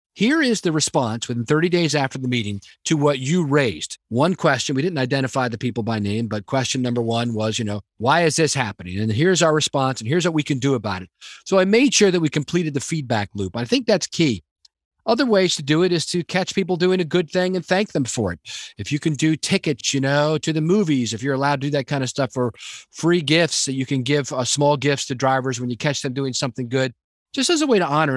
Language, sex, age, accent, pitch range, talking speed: English, male, 40-59, American, 120-160 Hz, 260 wpm